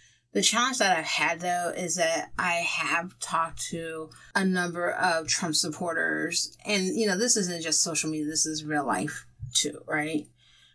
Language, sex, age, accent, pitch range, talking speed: English, female, 30-49, American, 175-220 Hz, 175 wpm